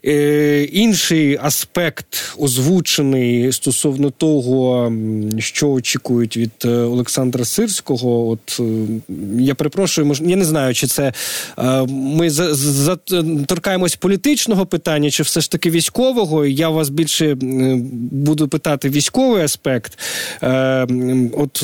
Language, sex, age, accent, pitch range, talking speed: Ukrainian, male, 20-39, native, 130-170 Hz, 105 wpm